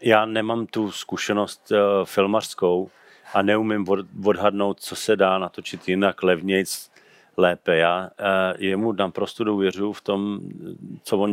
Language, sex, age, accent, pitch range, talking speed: Czech, male, 40-59, native, 95-105 Hz, 145 wpm